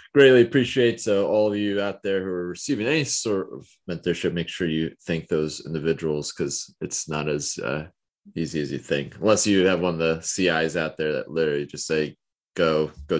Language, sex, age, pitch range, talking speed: English, male, 20-39, 75-95 Hz, 205 wpm